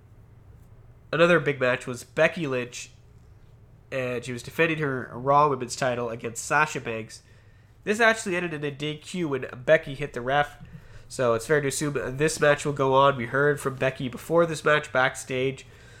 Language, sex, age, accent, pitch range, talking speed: English, male, 20-39, American, 115-145 Hz, 170 wpm